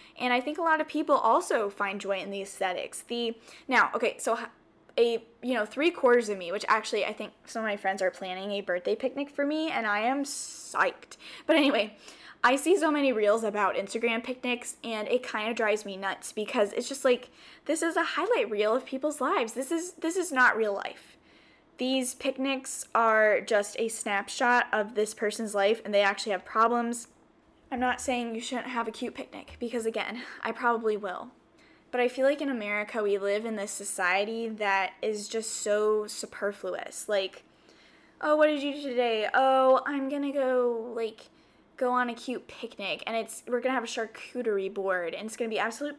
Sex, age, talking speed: female, 10-29, 205 wpm